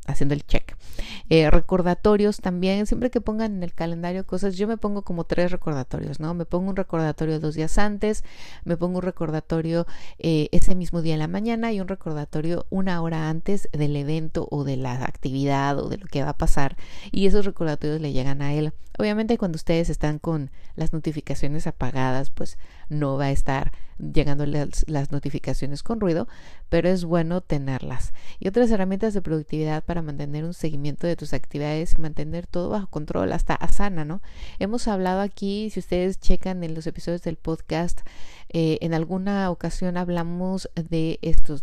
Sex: female